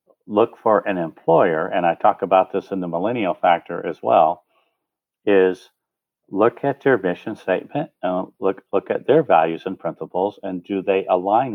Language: English